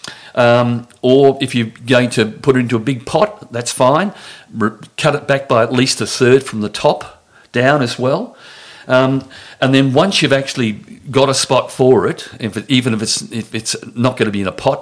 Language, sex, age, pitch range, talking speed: English, male, 50-69, 105-135 Hz, 220 wpm